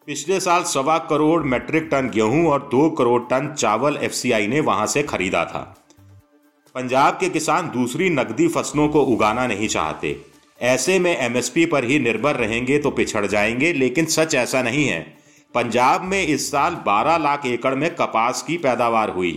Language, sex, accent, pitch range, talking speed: Hindi, male, native, 115-155 Hz, 170 wpm